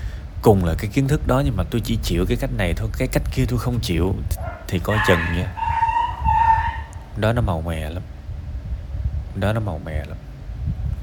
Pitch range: 85-115 Hz